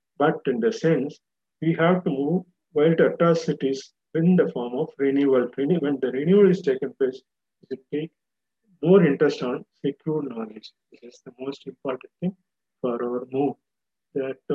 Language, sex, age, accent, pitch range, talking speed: Tamil, male, 50-69, native, 130-165 Hz, 155 wpm